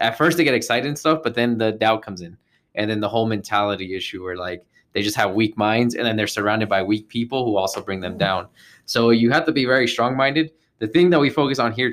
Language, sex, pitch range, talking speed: English, male, 105-120 Hz, 260 wpm